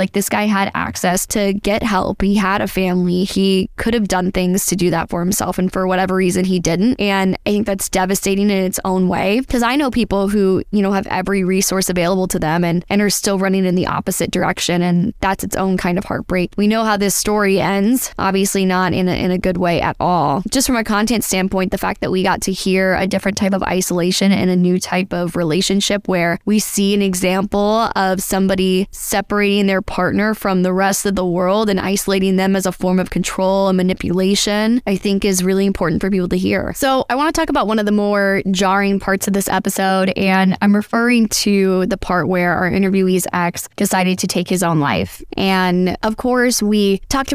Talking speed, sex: 225 wpm, female